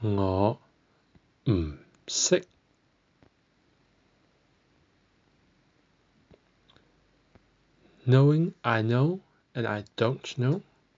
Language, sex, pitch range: English, male, 100-135 Hz